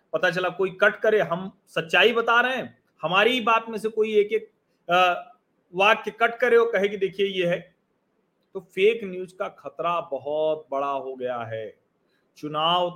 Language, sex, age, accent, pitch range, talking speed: Hindi, male, 40-59, native, 165-210 Hz, 165 wpm